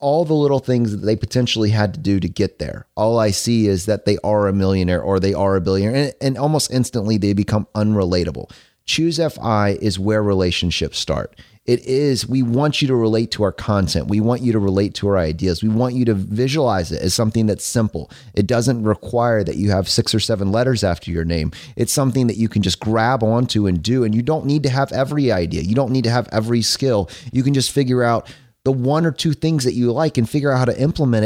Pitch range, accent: 105-130 Hz, American